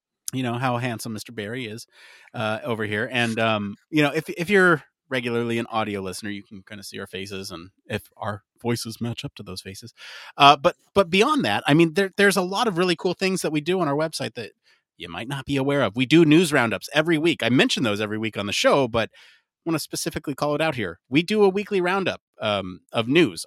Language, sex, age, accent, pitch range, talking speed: English, male, 30-49, American, 110-140 Hz, 245 wpm